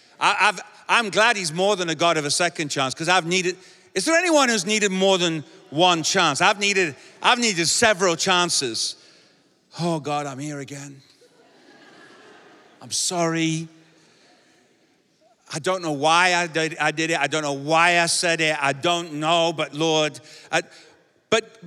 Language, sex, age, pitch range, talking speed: English, male, 50-69, 160-225 Hz, 180 wpm